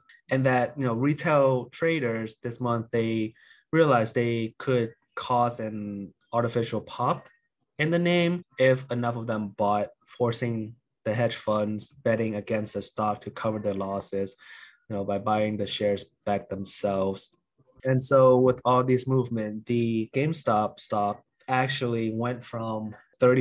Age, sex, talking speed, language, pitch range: 20-39, male, 145 wpm, English, 110-130 Hz